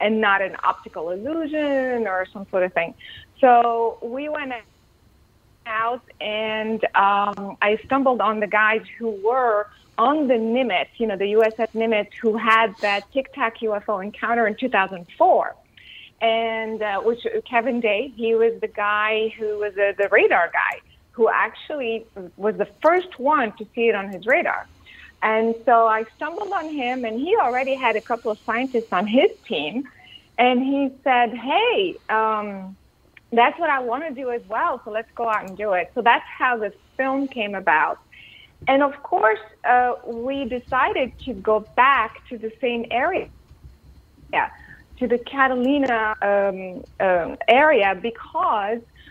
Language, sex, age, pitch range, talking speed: English, female, 30-49, 210-255 Hz, 160 wpm